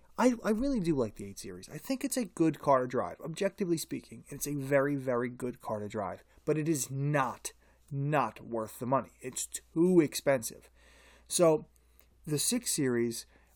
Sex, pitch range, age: male, 120-170 Hz, 30-49